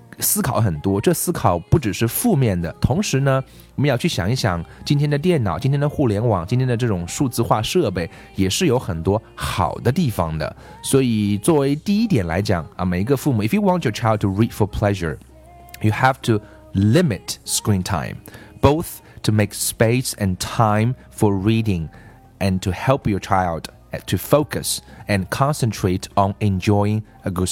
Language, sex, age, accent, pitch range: Chinese, male, 30-49, native, 100-135 Hz